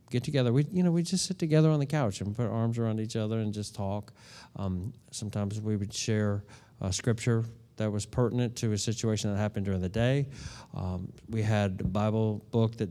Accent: American